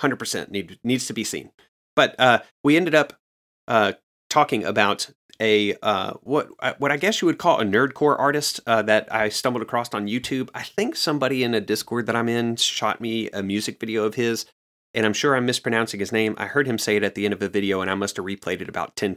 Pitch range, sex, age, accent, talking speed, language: 100-120 Hz, male, 30-49, American, 235 wpm, English